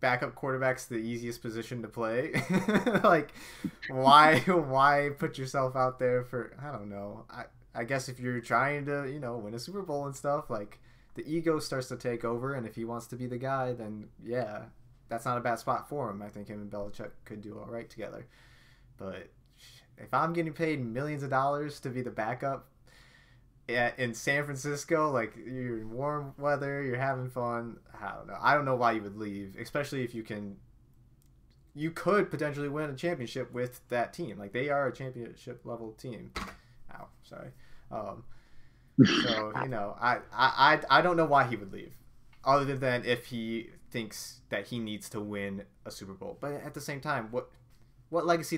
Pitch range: 115-140 Hz